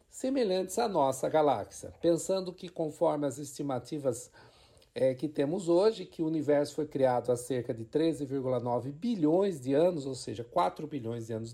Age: 50-69